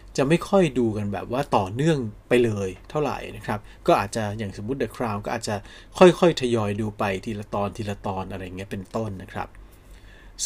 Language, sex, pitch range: Thai, male, 105-145 Hz